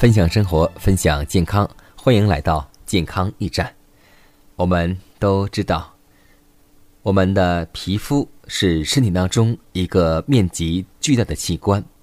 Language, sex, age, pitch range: Chinese, male, 20-39, 85-115 Hz